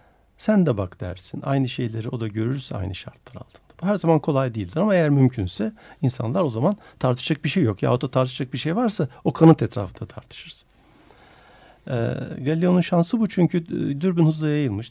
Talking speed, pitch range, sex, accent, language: 180 wpm, 110-160 Hz, male, native, Turkish